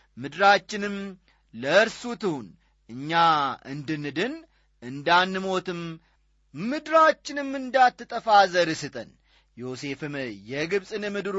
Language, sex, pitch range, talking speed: Amharic, male, 145-215 Hz, 60 wpm